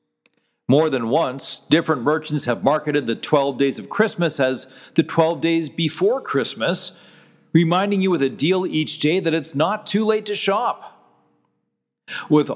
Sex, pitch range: male, 145-190 Hz